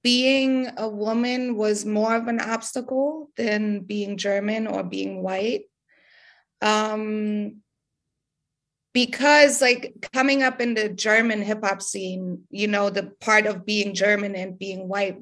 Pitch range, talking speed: 195-225 Hz, 135 wpm